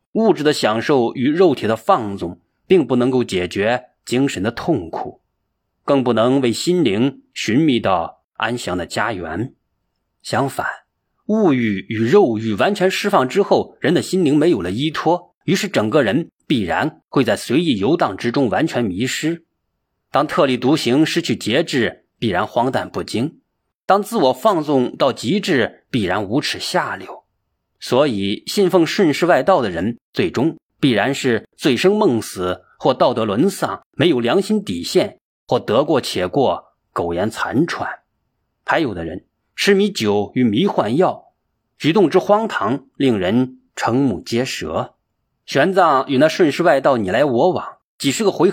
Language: Chinese